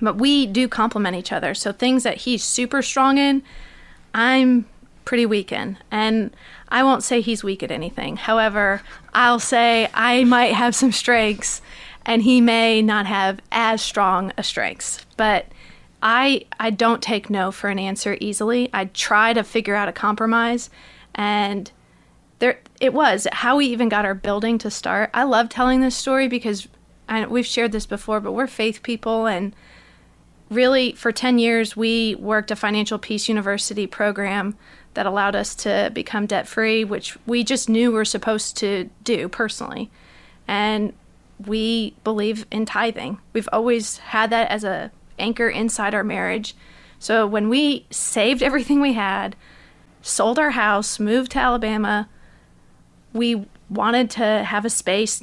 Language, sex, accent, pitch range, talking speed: English, female, American, 210-240 Hz, 160 wpm